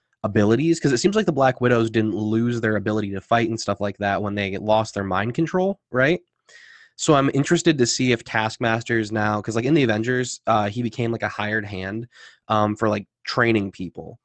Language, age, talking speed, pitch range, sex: English, 20-39, 215 wpm, 105-120 Hz, male